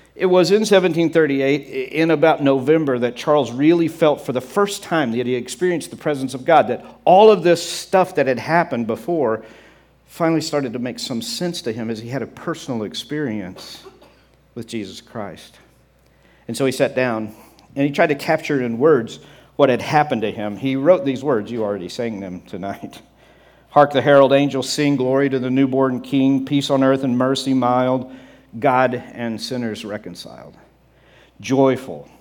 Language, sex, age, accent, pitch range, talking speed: English, male, 50-69, American, 115-140 Hz, 180 wpm